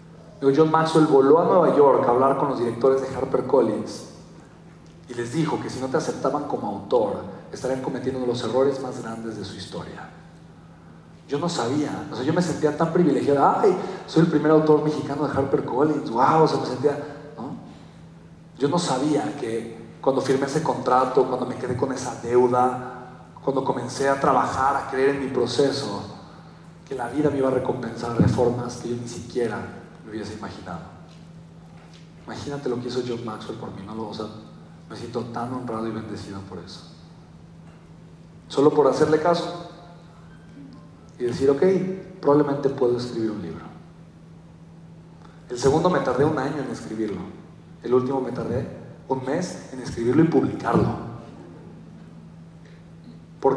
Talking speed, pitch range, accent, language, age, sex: 165 wpm, 120-155 Hz, Mexican, Spanish, 40-59, male